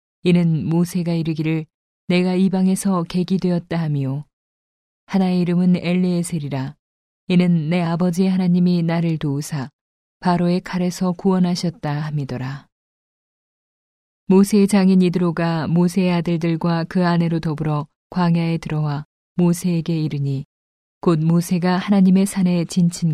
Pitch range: 155-180 Hz